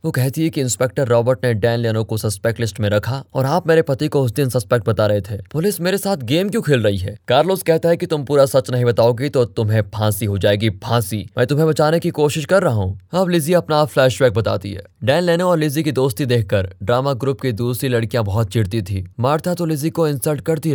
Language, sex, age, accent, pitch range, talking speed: Hindi, male, 20-39, native, 110-155 Hz, 240 wpm